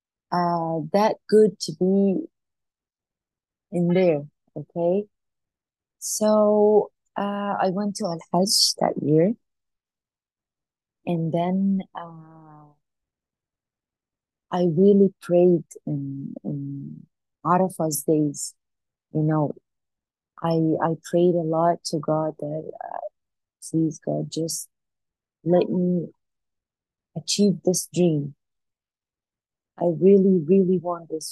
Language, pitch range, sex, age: English, 160-210 Hz, female, 30-49